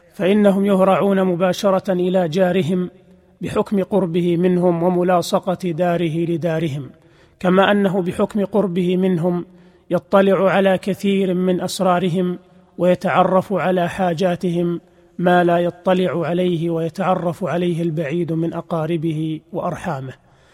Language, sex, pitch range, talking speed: Arabic, male, 175-190 Hz, 100 wpm